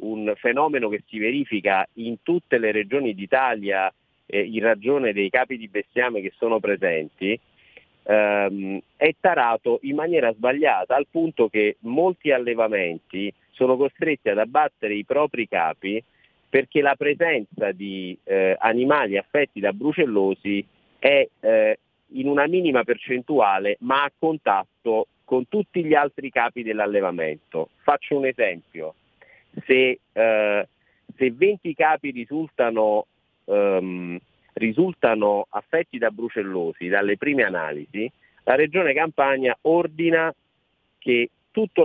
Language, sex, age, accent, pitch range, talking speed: Italian, male, 40-59, native, 105-155 Hz, 120 wpm